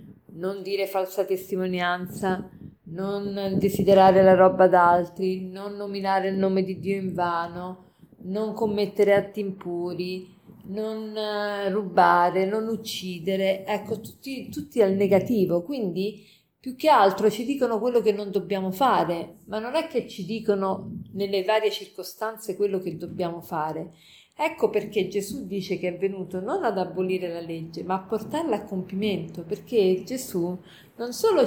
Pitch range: 185-220 Hz